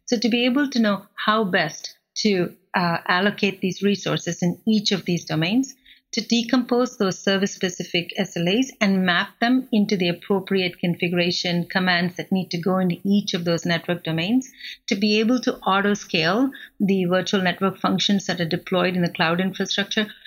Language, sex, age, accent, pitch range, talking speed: English, female, 50-69, Indian, 175-210 Hz, 170 wpm